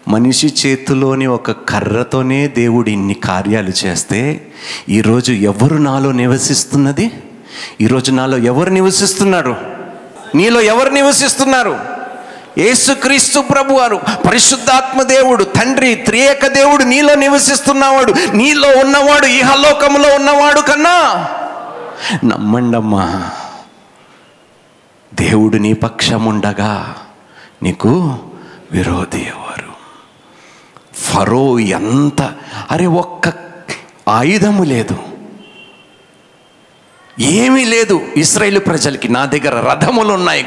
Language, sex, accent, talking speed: Telugu, male, native, 80 wpm